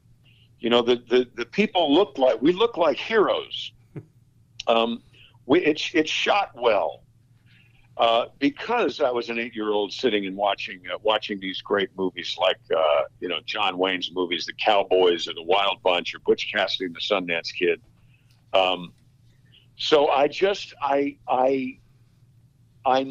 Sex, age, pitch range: male, 50-69, 120-150 Hz